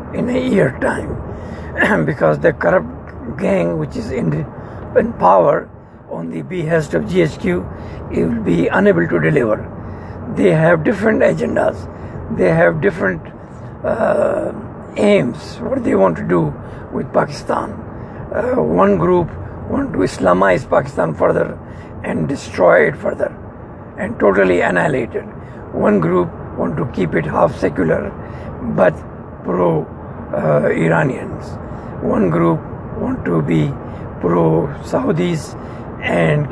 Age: 60-79